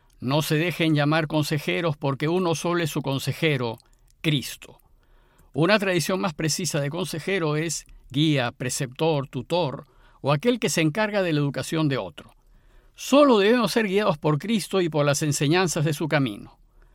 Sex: male